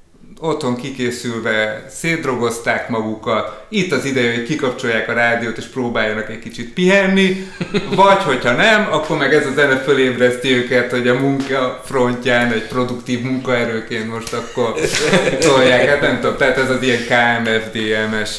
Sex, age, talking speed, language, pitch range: male, 30-49, 145 wpm, Hungarian, 110-145 Hz